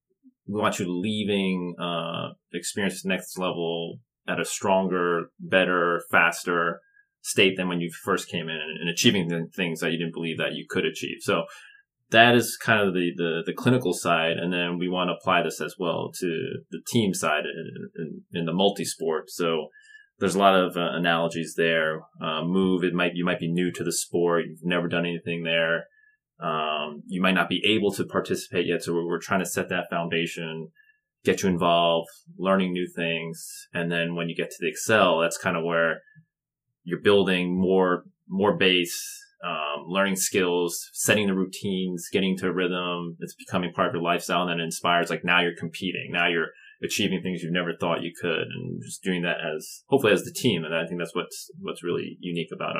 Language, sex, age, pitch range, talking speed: English, male, 30-49, 85-100 Hz, 200 wpm